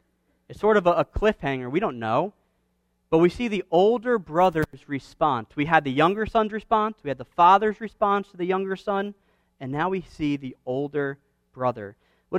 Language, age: English, 40-59